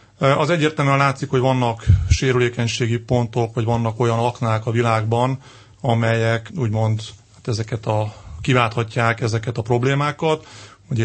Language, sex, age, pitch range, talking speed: Hungarian, male, 30-49, 115-125 Hz, 125 wpm